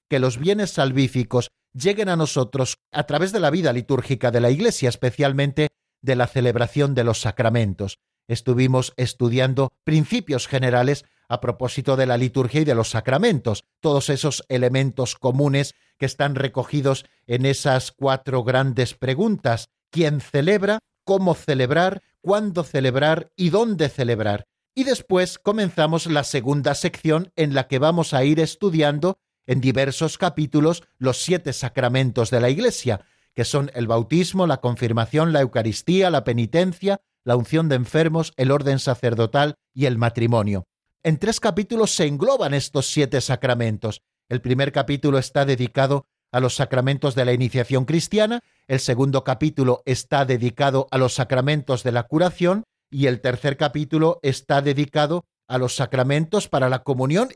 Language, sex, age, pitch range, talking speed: Spanish, male, 50-69, 125-160 Hz, 150 wpm